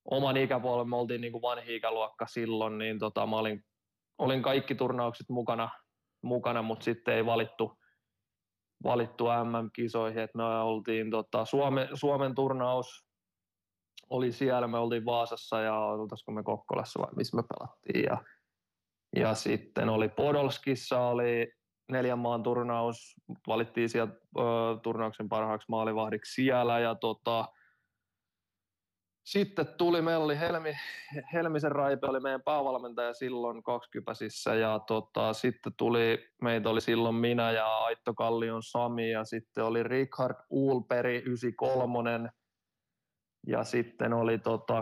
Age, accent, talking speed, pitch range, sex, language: 20-39, native, 125 wpm, 110-130 Hz, male, Finnish